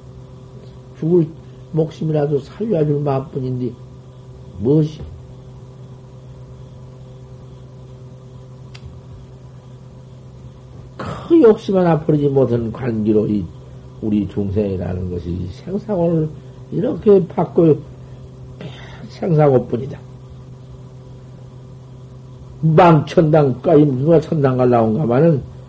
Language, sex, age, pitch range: Korean, male, 50-69, 130-170 Hz